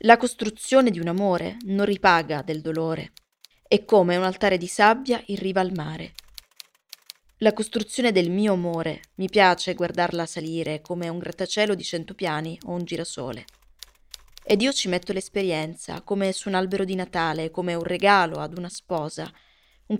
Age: 20-39